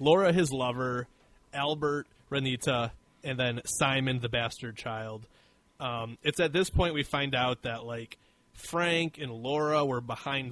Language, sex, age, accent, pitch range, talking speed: English, male, 20-39, American, 125-160 Hz, 150 wpm